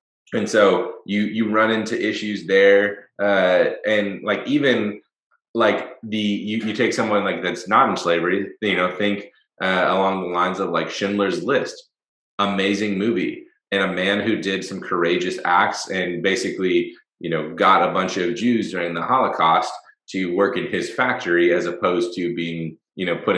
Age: 20-39